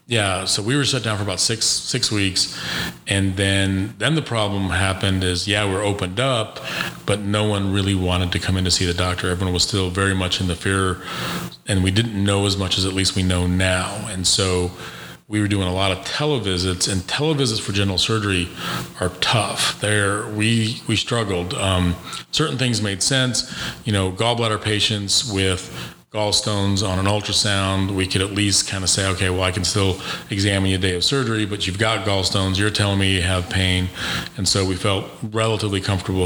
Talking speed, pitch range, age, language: 200 wpm, 95-110 Hz, 40-59, English